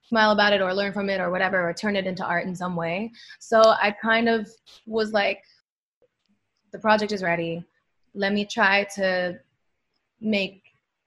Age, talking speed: 20-39, 175 wpm